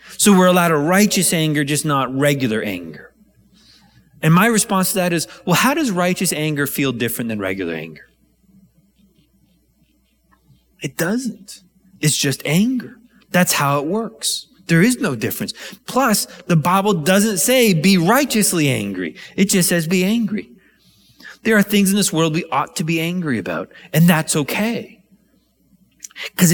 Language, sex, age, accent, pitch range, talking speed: English, male, 30-49, American, 140-200 Hz, 155 wpm